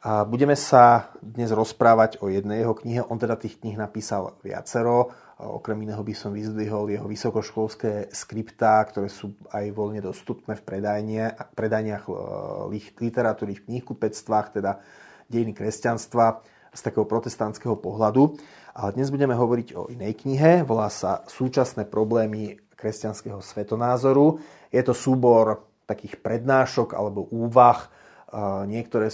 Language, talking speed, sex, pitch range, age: Slovak, 125 wpm, male, 105-120 Hz, 30-49